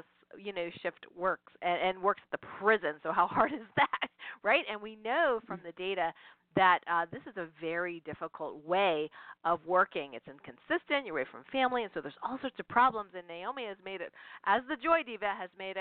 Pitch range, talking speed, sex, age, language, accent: 175-220 Hz, 215 wpm, female, 40-59, English, American